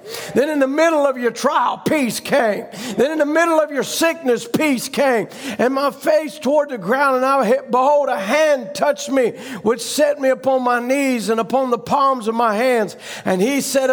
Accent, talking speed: American, 205 wpm